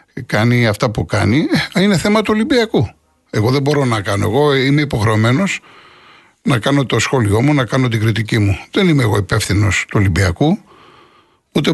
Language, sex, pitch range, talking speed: Greek, male, 105-150 Hz, 170 wpm